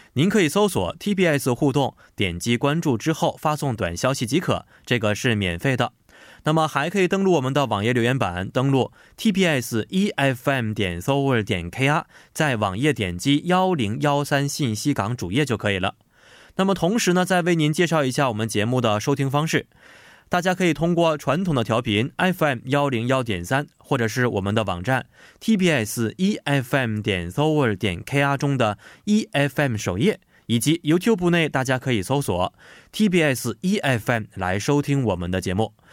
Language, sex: Korean, male